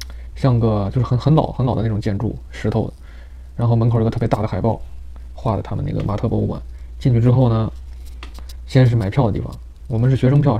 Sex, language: male, Chinese